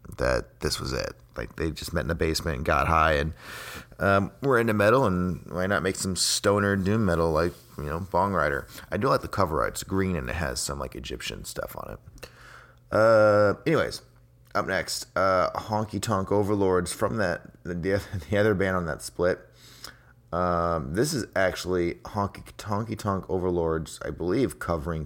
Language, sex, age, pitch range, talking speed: English, male, 30-49, 80-100 Hz, 185 wpm